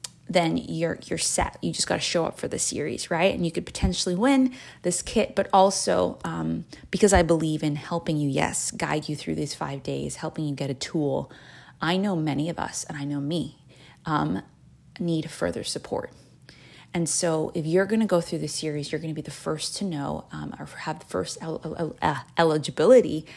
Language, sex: English, female